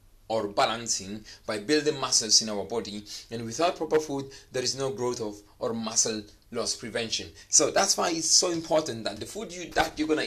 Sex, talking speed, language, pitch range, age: male, 200 wpm, English, 110-145 Hz, 30-49